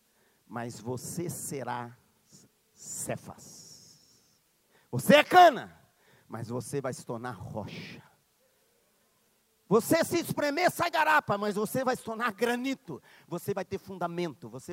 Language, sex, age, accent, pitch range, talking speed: Portuguese, male, 40-59, Brazilian, 150-225 Hz, 120 wpm